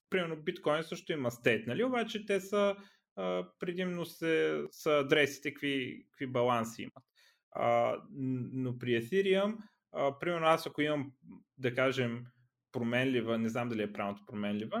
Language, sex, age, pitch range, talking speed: Bulgarian, male, 30-49, 115-160 Hz, 135 wpm